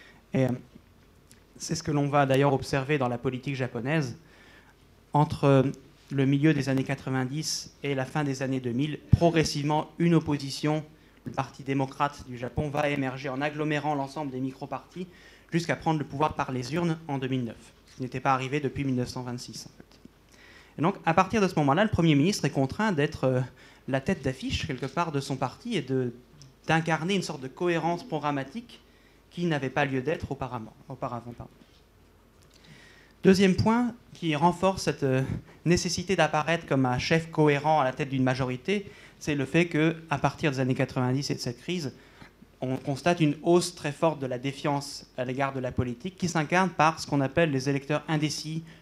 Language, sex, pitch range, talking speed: French, male, 130-160 Hz, 175 wpm